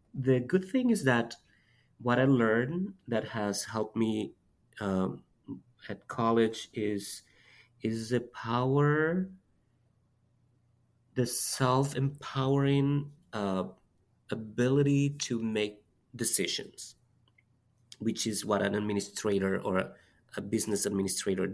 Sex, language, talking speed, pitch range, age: male, English, 95 wpm, 100-125 Hz, 30-49